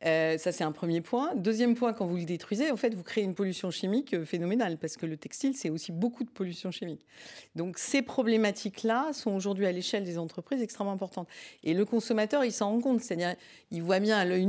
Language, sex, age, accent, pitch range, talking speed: French, female, 40-59, French, 160-210 Hz, 225 wpm